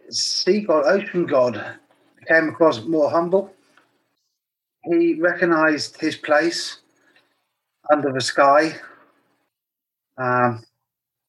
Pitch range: 140-170 Hz